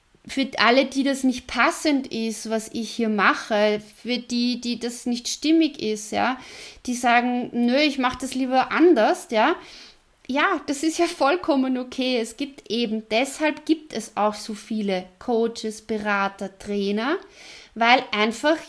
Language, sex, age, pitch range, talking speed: German, female, 30-49, 215-285 Hz, 155 wpm